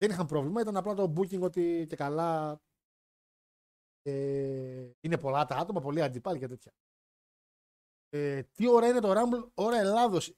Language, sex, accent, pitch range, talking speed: Greek, male, native, 130-180 Hz, 155 wpm